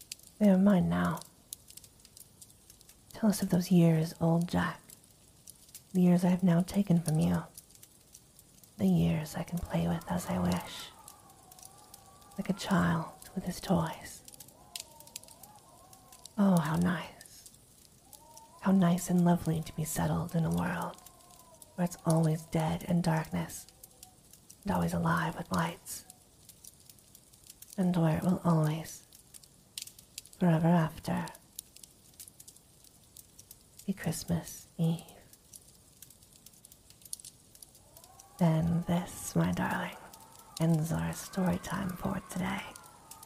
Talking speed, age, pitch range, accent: 110 wpm, 40-59, 155-180 Hz, American